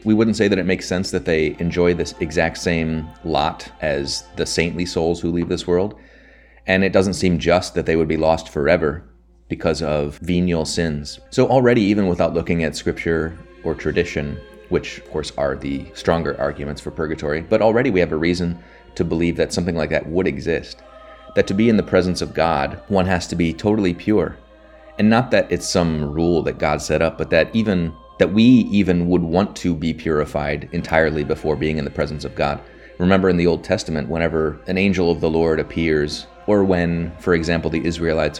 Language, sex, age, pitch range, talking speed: English, male, 30-49, 75-90 Hz, 205 wpm